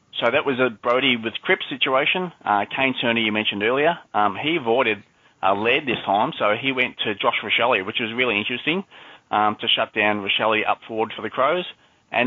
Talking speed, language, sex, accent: 205 wpm, English, male, Australian